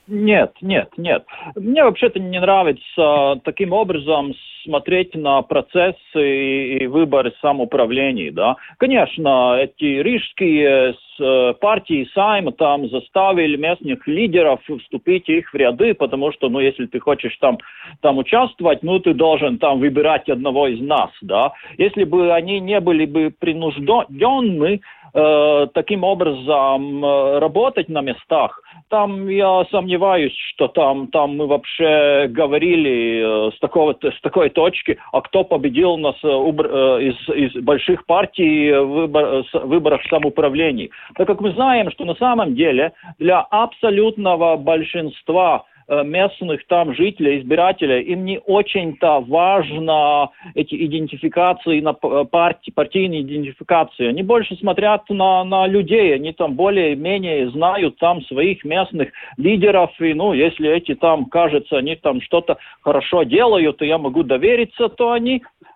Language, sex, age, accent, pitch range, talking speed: Russian, male, 40-59, native, 145-195 Hz, 125 wpm